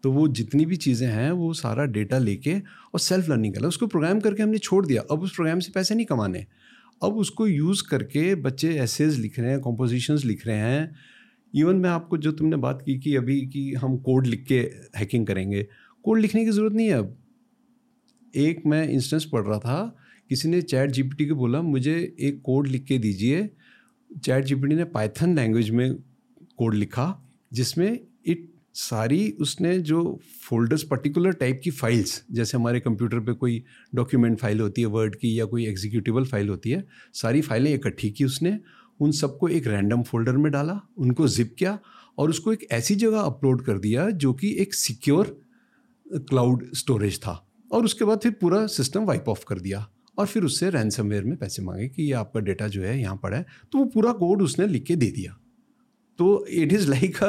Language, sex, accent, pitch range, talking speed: Hindi, male, native, 120-185 Hz, 195 wpm